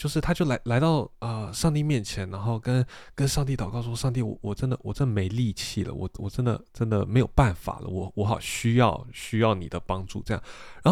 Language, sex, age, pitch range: Chinese, male, 20-39, 100-145 Hz